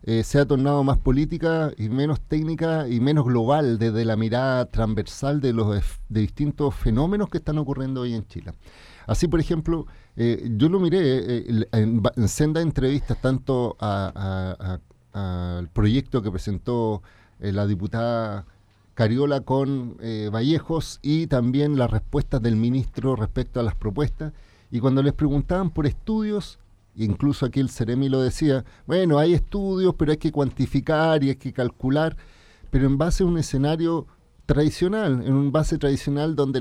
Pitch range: 110-150 Hz